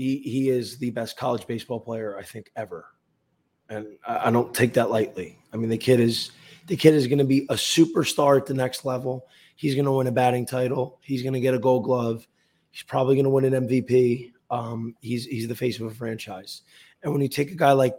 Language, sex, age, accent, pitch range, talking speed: English, male, 20-39, American, 120-140 Hz, 230 wpm